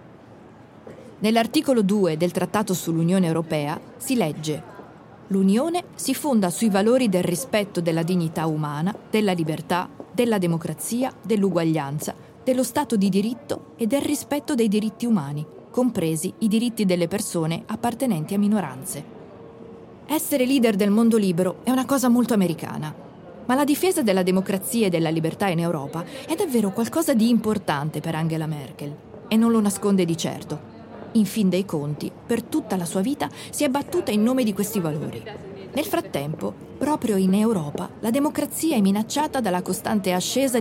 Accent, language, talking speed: native, Italian, 155 wpm